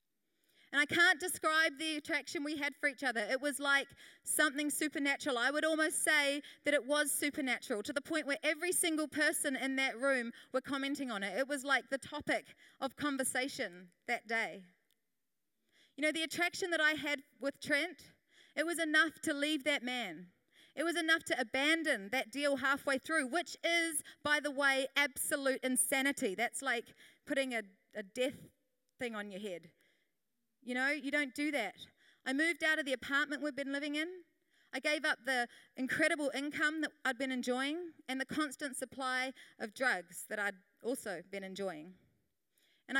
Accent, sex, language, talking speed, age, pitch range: Australian, female, English, 175 wpm, 30-49, 250-305 Hz